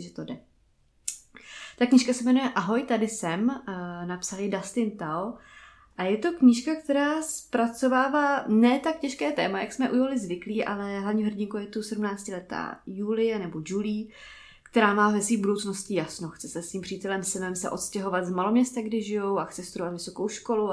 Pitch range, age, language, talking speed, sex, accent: 185-220 Hz, 20-39, Czech, 180 wpm, female, native